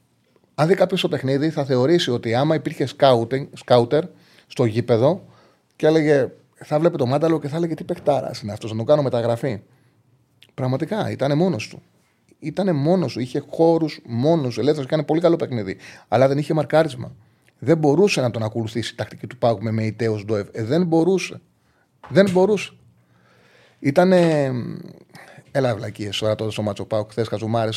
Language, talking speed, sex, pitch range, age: Greek, 170 wpm, male, 120-155 Hz, 30-49